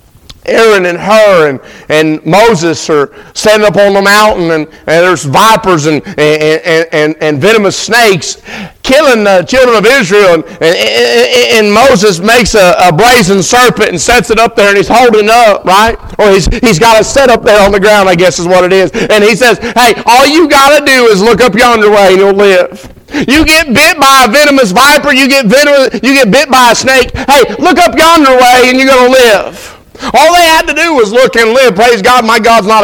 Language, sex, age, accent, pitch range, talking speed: English, male, 50-69, American, 150-245 Hz, 215 wpm